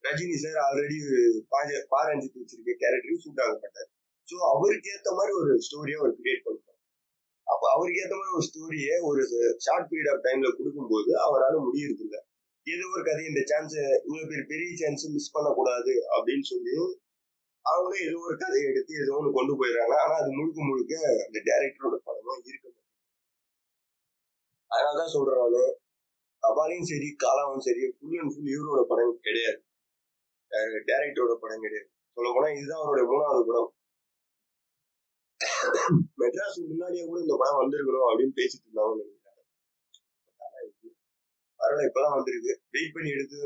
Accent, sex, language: native, male, Tamil